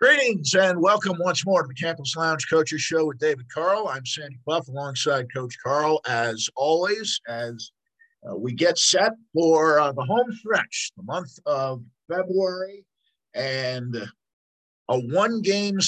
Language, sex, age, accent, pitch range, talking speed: English, male, 50-69, American, 125-160 Hz, 145 wpm